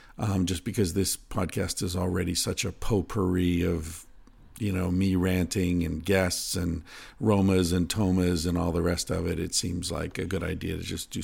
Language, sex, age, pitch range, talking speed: English, male, 50-69, 90-105 Hz, 190 wpm